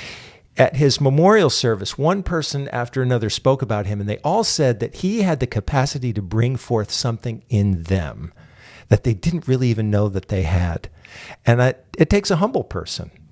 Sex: male